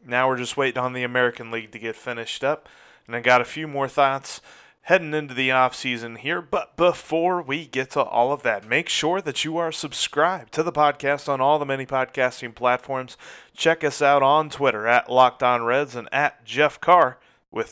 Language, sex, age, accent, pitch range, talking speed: English, male, 30-49, American, 125-145 Hz, 205 wpm